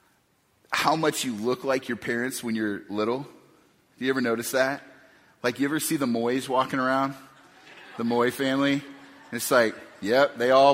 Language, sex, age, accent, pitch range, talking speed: English, male, 30-49, American, 130-180 Hz, 180 wpm